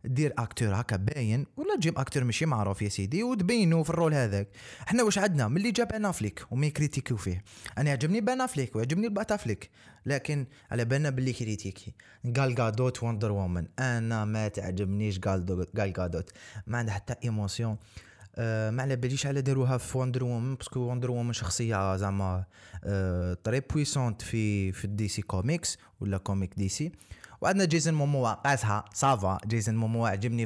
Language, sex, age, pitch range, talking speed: Arabic, male, 20-39, 105-150 Hz, 160 wpm